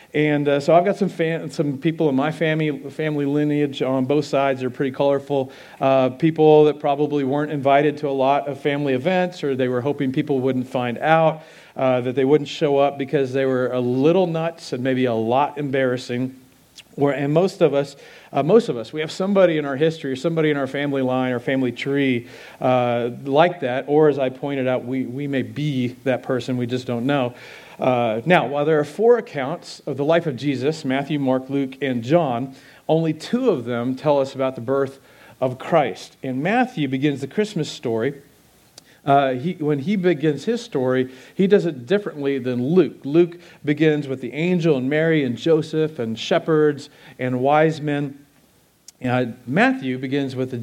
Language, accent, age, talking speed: English, American, 40-59, 195 wpm